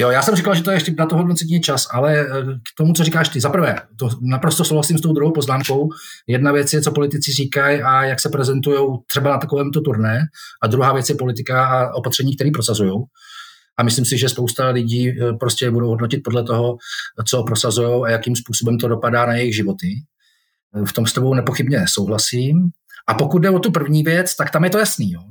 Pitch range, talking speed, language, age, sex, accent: 130-160 Hz, 210 wpm, Czech, 30-49, male, native